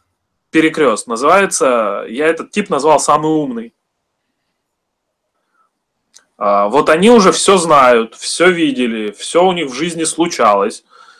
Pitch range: 155-240 Hz